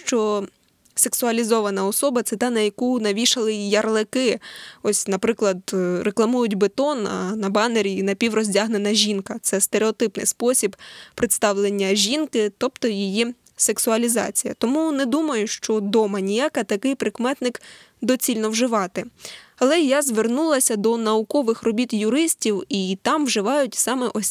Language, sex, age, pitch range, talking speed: Ukrainian, female, 10-29, 200-245 Hz, 125 wpm